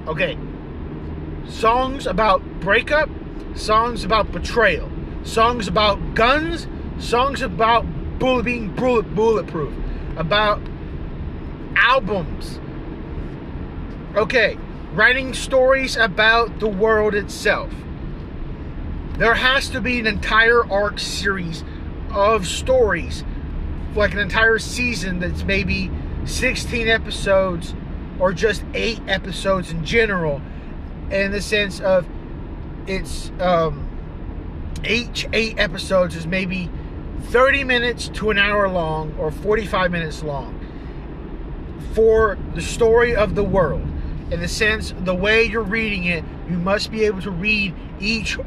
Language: English